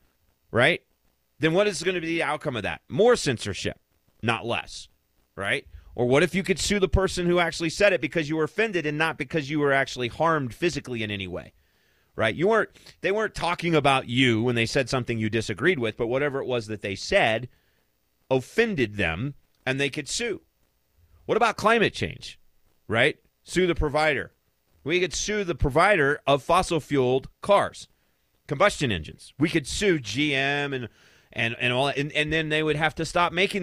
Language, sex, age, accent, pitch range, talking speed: English, male, 30-49, American, 105-165 Hz, 195 wpm